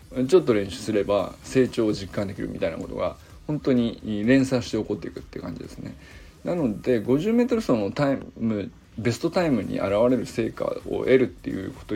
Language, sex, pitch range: Japanese, male, 110-150 Hz